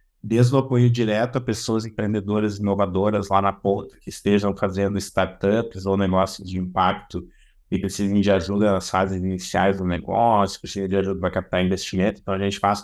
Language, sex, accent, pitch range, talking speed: Portuguese, male, Brazilian, 100-115 Hz, 180 wpm